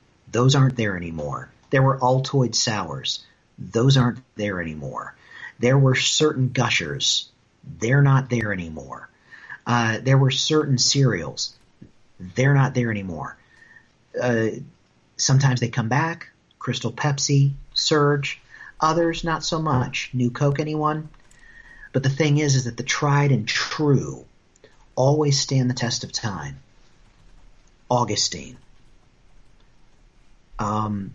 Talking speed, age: 120 wpm, 40-59